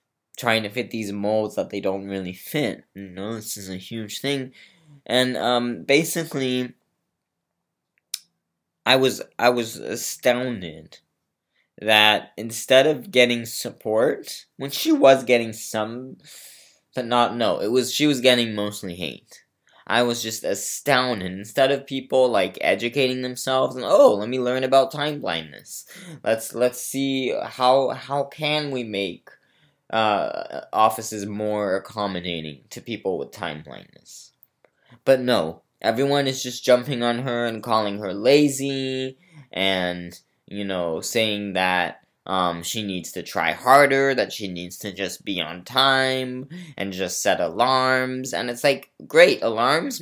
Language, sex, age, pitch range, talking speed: English, male, 20-39, 105-130 Hz, 145 wpm